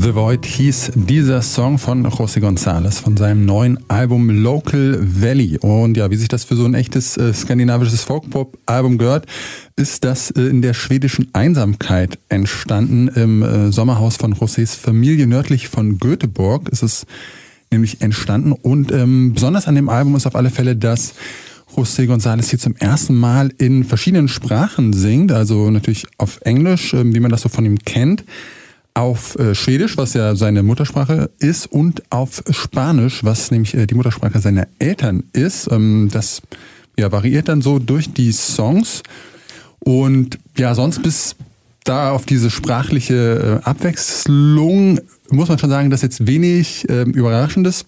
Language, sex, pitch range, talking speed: German, male, 115-140 Hz, 155 wpm